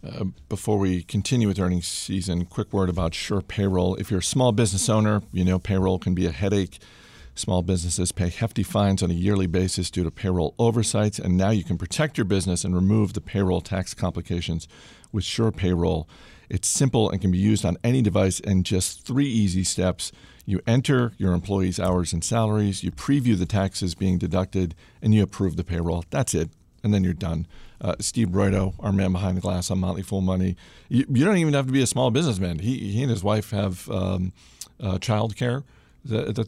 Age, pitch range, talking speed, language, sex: 50-69, 90-110 Hz, 205 wpm, English, male